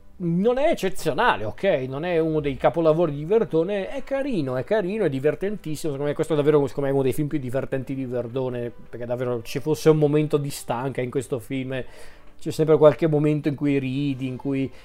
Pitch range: 125-155 Hz